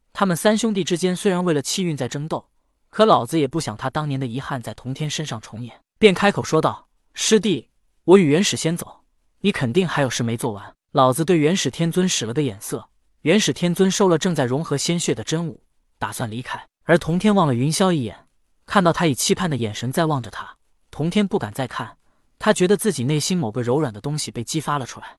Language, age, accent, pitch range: Chinese, 20-39, native, 130-190 Hz